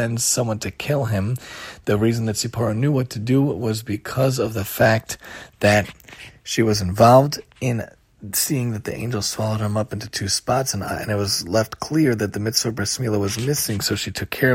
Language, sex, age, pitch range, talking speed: English, male, 30-49, 105-125 Hz, 200 wpm